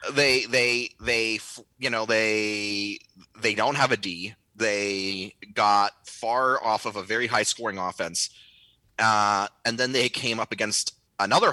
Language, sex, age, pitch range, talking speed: English, male, 30-49, 100-120 Hz, 150 wpm